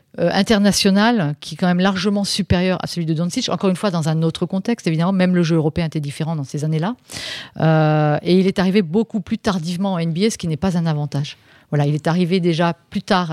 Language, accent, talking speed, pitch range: French, French, 235 wpm, 160-195 Hz